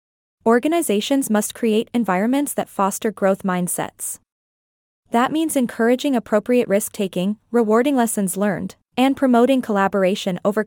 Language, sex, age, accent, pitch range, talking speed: English, female, 20-39, American, 200-250 Hz, 110 wpm